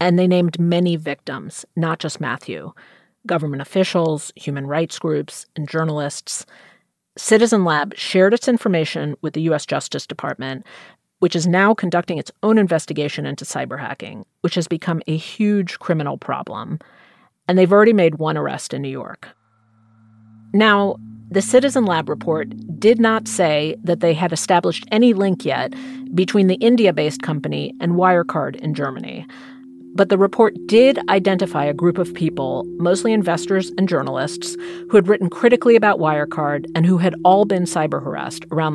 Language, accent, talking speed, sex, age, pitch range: English, American, 155 wpm, female, 40-59, 155-205 Hz